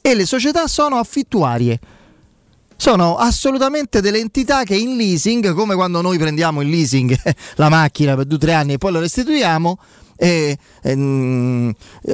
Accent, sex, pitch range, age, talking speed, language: native, male, 140-195 Hz, 30-49, 150 wpm, Italian